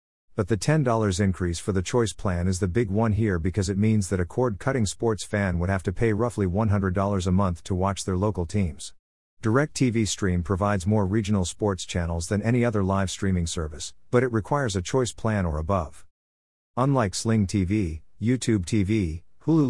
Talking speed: 190 wpm